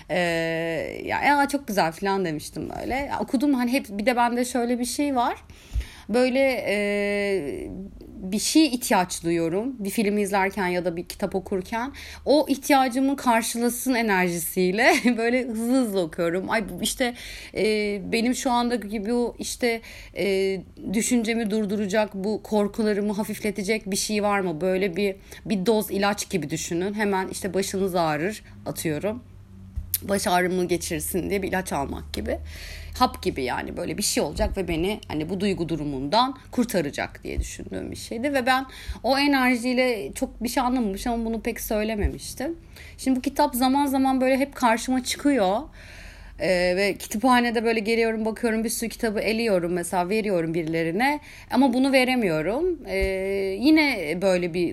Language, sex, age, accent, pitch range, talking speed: Turkish, female, 30-49, native, 180-245 Hz, 150 wpm